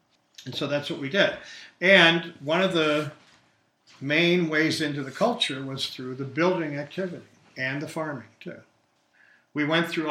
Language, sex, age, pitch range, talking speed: English, male, 50-69, 125-150 Hz, 160 wpm